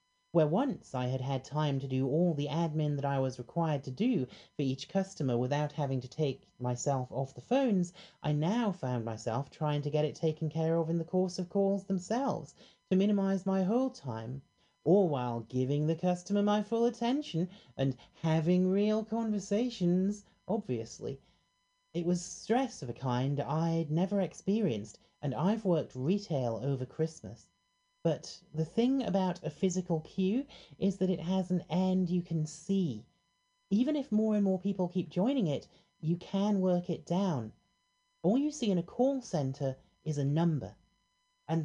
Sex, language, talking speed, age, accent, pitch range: male, English, 170 wpm, 30-49, British, 135-205 Hz